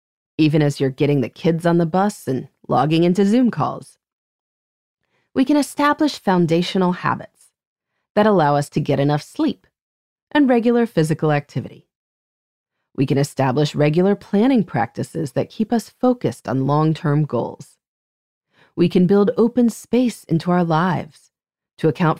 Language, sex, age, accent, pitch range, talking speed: English, female, 30-49, American, 150-235 Hz, 145 wpm